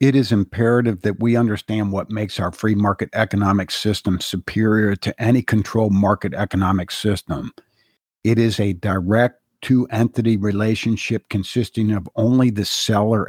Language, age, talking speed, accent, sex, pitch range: English, 50-69, 140 wpm, American, male, 100-115 Hz